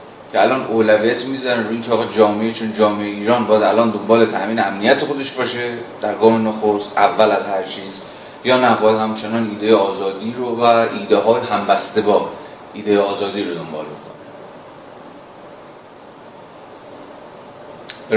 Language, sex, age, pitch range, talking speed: Persian, male, 30-49, 105-125 Hz, 140 wpm